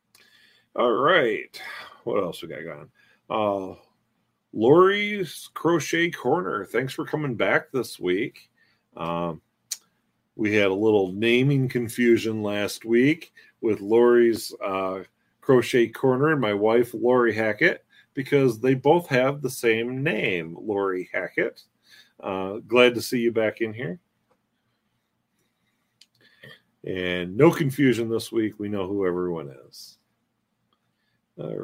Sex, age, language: male, 40-59, English